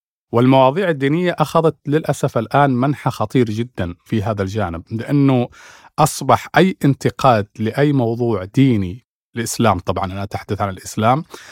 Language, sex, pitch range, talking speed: Arabic, male, 110-135 Hz, 125 wpm